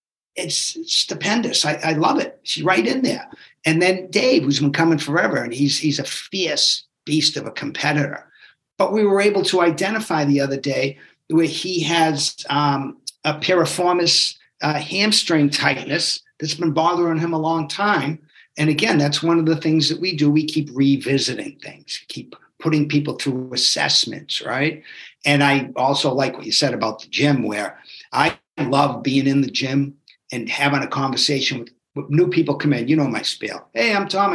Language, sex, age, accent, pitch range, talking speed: English, male, 50-69, American, 140-170 Hz, 185 wpm